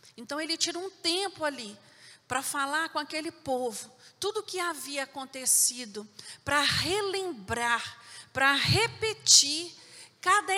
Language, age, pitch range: Portuguese, 40-59, 275-390 Hz